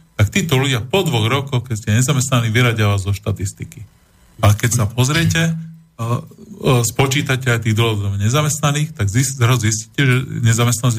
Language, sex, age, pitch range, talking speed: Slovak, male, 40-59, 110-135 Hz, 140 wpm